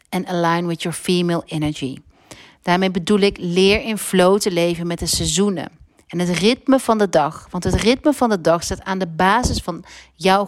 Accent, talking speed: Dutch, 200 wpm